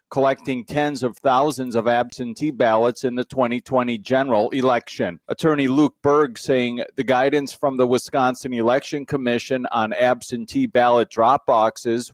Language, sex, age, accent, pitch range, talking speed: English, male, 40-59, American, 120-140 Hz, 140 wpm